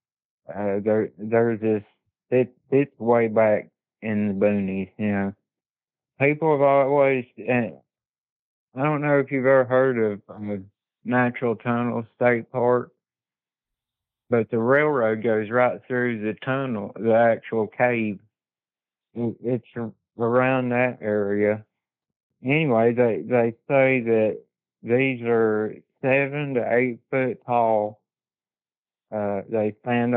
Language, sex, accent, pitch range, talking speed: English, male, American, 110-130 Hz, 120 wpm